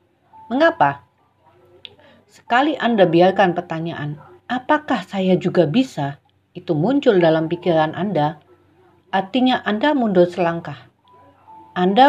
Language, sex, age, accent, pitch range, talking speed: Indonesian, female, 40-59, native, 170-220 Hz, 95 wpm